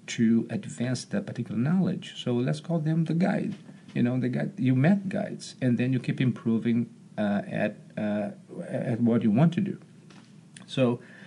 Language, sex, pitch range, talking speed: English, male, 125-190 Hz, 175 wpm